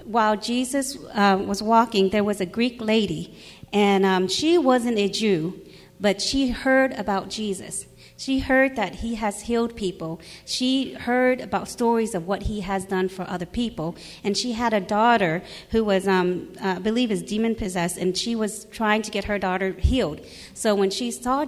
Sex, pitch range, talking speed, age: female, 195-240 Hz, 180 wpm, 30-49